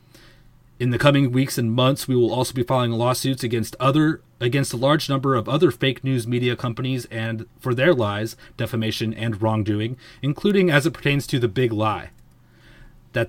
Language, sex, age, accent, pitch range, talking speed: English, male, 30-49, American, 115-135 Hz, 180 wpm